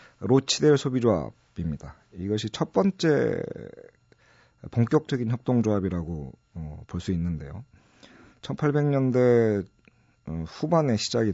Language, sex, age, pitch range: Korean, male, 40-59, 95-130 Hz